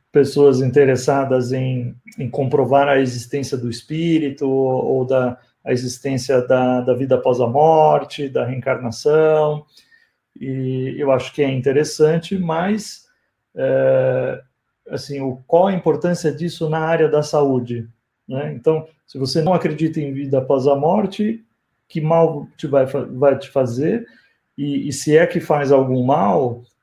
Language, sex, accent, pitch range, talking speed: Portuguese, male, Brazilian, 130-155 Hz, 145 wpm